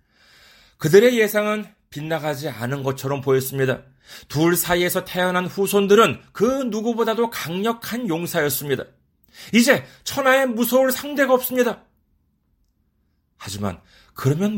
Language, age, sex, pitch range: Korean, 40-59, male, 130-215 Hz